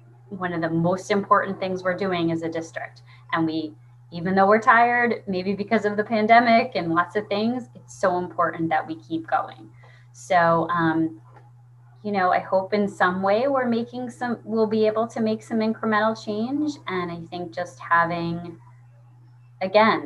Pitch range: 125-195 Hz